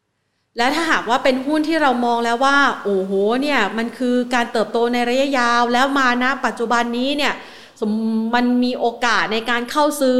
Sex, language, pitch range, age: female, Thai, 210-260 Hz, 30-49